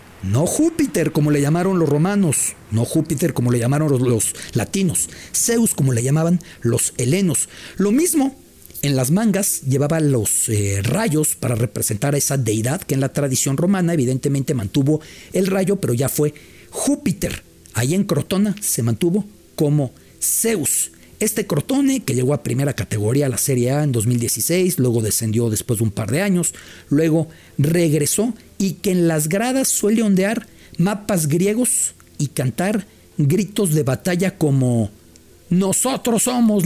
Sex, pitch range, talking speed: male, 125-190 Hz, 155 wpm